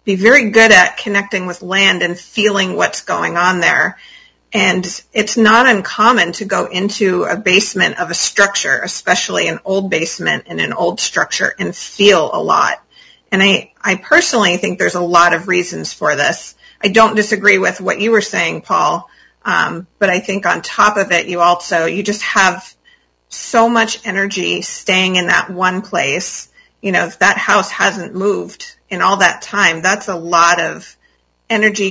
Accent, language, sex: American, English, female